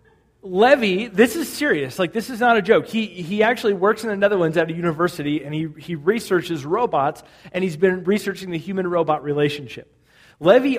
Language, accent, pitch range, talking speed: English, American, 155-235 Hz, 185 wpm